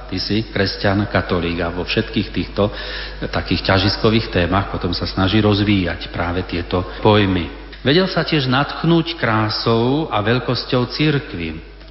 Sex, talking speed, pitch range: male, 135 wpm, 95-125 Hz